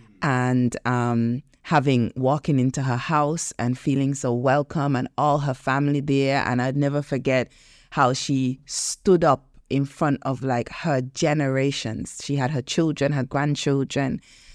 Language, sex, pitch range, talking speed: English, female, 130-160 Hz, 150 wpm